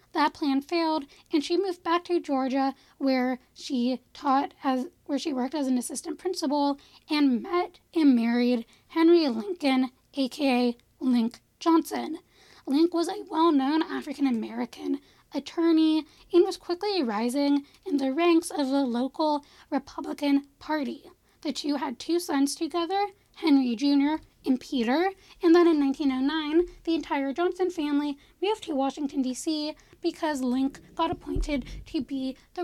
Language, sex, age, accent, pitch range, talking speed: English, female, 10-29, American, 270-335 Hz, 140 wpm